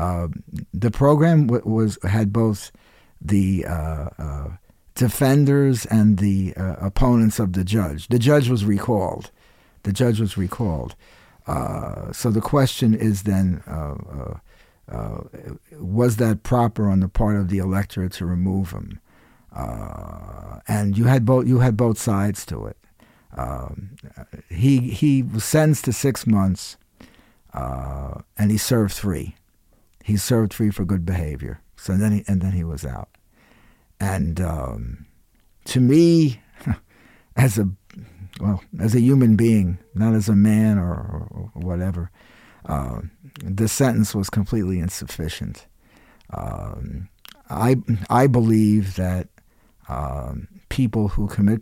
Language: English